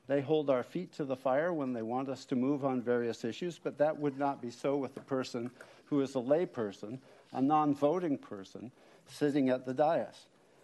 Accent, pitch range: American, 130-155 Hz